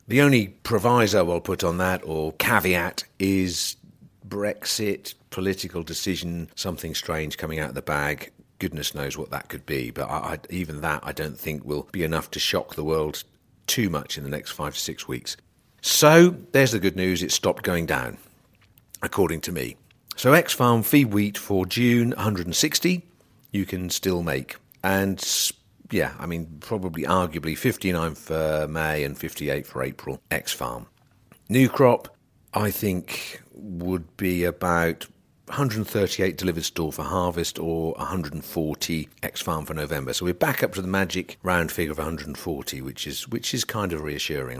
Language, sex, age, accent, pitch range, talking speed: English, male, 50-69, British, 80-105 Hz, 180 wpm